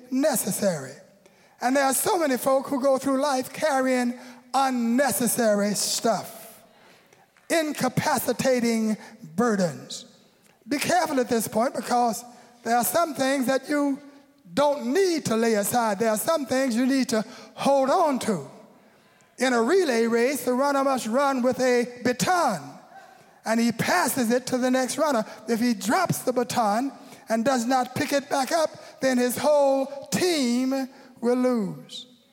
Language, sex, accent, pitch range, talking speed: English, male, American, 225-270 Hz, 150 wpm